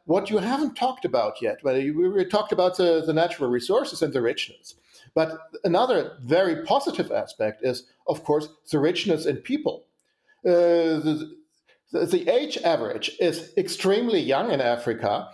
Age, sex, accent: 50-69, male, German